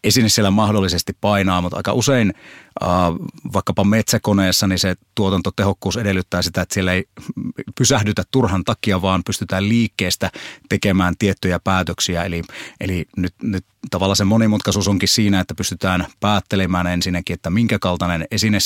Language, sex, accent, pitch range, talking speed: Finnish, male, native, 90-105 Hz, 140 wpm